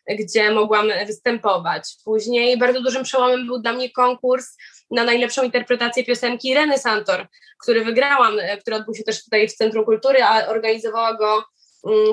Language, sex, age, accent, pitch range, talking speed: Polish, female, 20-39, native, 225-285 Hz, 155 wpm